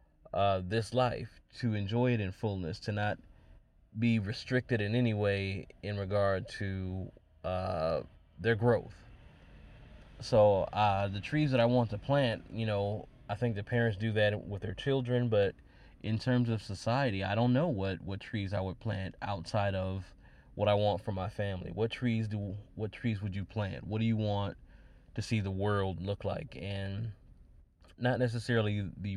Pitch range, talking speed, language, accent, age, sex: 95-115 Hz, 175 wpm, English, American, 20-39, male